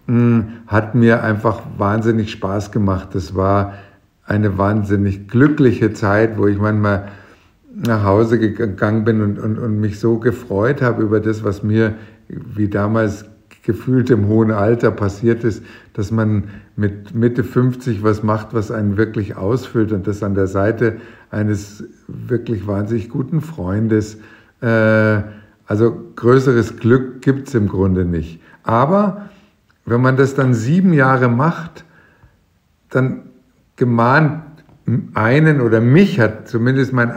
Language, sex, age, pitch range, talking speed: German, male, 50-69, 105-130 Hz, 135 wpm